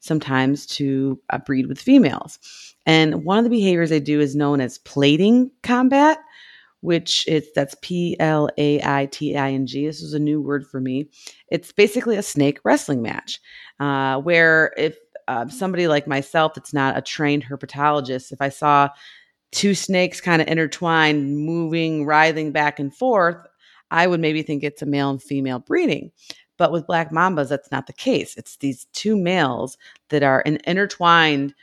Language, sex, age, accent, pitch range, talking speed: English, female, 30-49, American, 140-165 Hz, 160 wpm